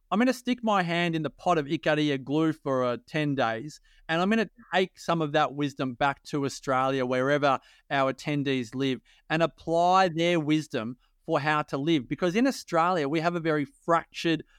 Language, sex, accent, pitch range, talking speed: English, male, Australian, 145-175 Hz, 200 wpm